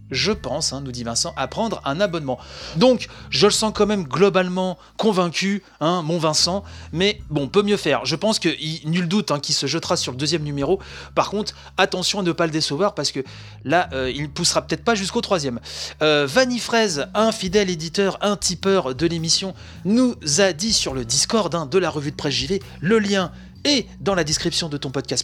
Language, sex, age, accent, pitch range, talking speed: French, male, 30-49, French, 150-195 Hz, 215 wpm